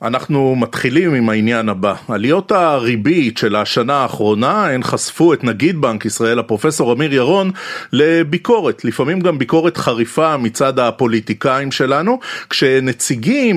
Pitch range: 120-180 Hz